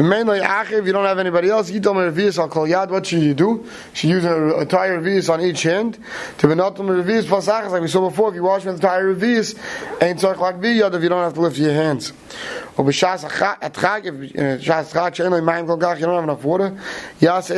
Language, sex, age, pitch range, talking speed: English, male, 30-49, 170-205 Hz, 275 wpm